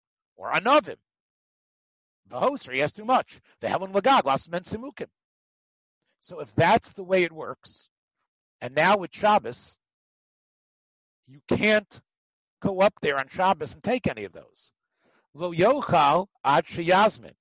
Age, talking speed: 50-69, 135 wpm